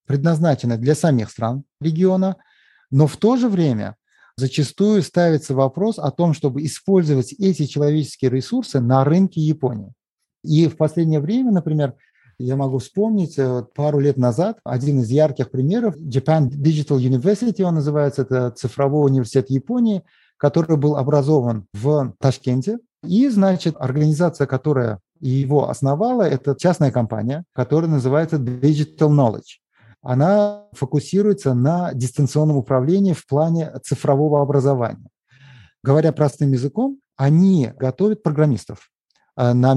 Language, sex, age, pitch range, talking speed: Russian, male, 30-49, 130-165 Hz, 120 wpm